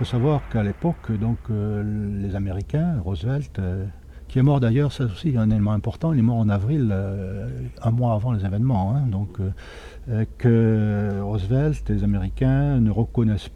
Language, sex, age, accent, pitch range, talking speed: French, male, 60-79, French, 100-125 Hz, 175 wpm